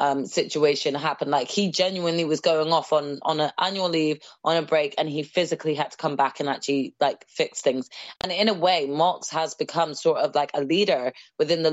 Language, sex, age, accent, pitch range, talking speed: English, female, 20-39, British, 145-170 Hz, 220 wpm